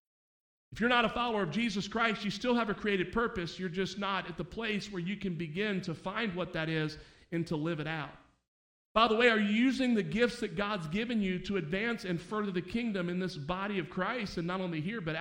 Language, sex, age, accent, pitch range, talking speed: English, male, 40-59, American, 175-220 Hz, 245 wpm